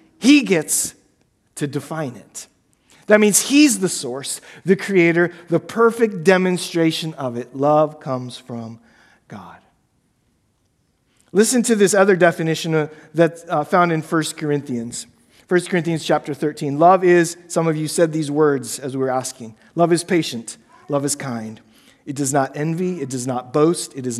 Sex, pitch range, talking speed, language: male, 135-170 Hz, 155 wpm, English